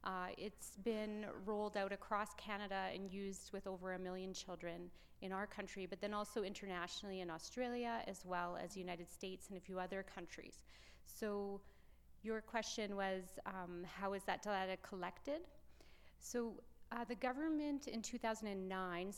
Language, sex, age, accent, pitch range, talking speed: English, female, 30-49, American, 180-210 Hz, 155 wpm